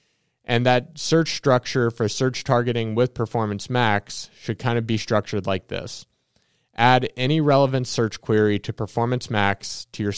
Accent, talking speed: American, 160 wpm